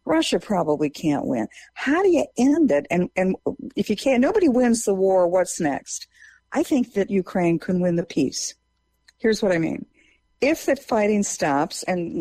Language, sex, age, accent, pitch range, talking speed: English, female, 50-69, American, 165-270 Hz, 180 wpm